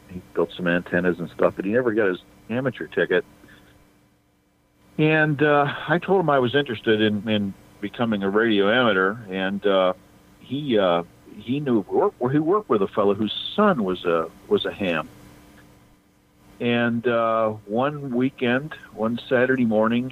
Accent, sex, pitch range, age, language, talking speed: American, male, 100-125 Hz, 50-69, English, 160 wpm